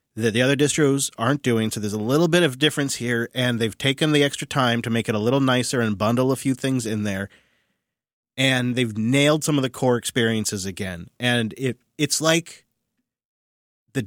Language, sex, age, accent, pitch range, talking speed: English, male, 30-49, American, 115-145 Hz, 200 wpm